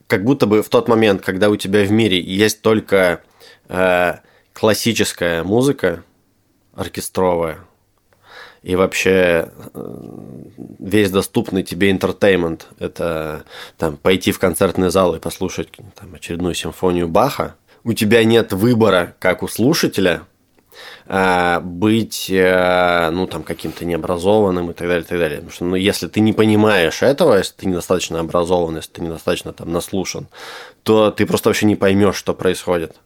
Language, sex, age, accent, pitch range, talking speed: Russian, male, 20-39, native, 85-105 Hz, 140 wpm